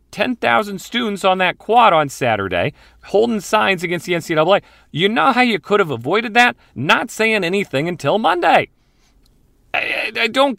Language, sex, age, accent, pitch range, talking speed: English, male, 40-59, American, 115-180 Hz, 160 wpm